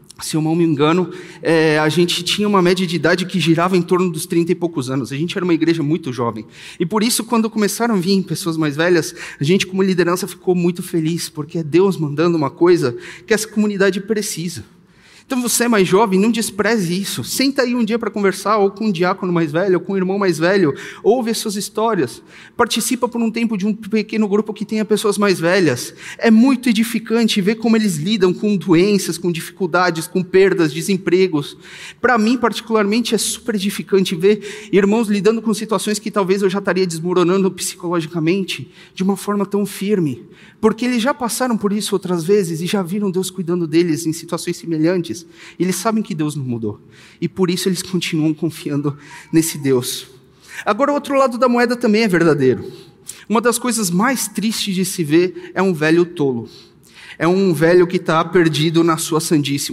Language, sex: Portuguese, male